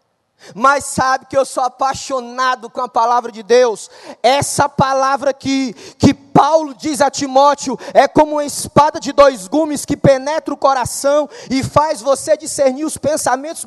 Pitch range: 230-305 Hz